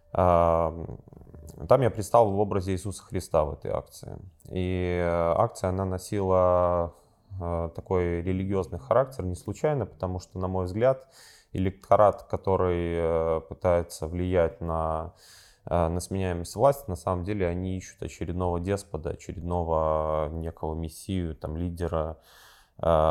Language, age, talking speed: Ukrainian, 20-39, 110 wpm